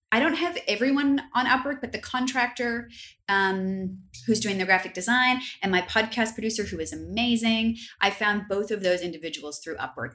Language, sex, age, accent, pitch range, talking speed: English, female, 30-49, American, 175-235 Hz, 175 wpm